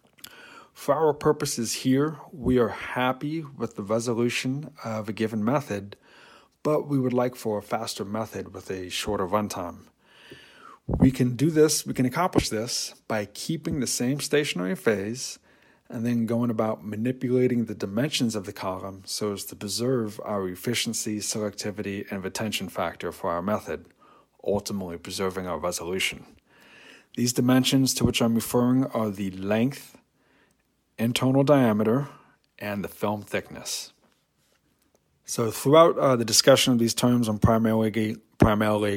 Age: 30-49